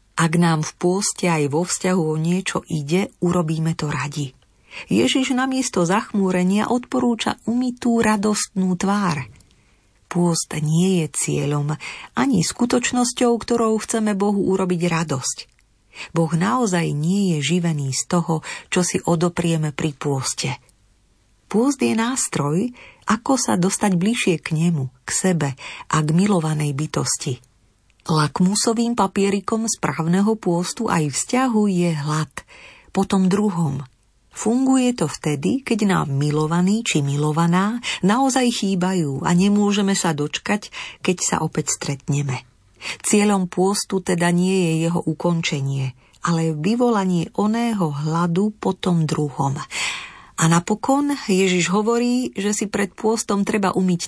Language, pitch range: Slovak, 155-210 Hz